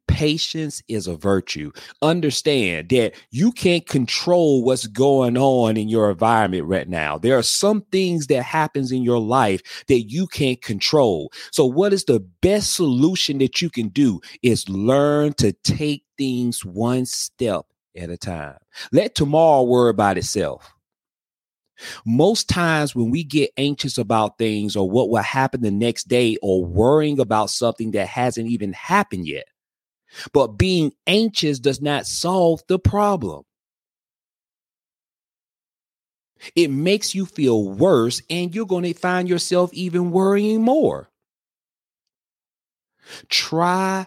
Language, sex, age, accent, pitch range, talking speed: English, male, 30-49, American, 110-155 Hz, 140 wpm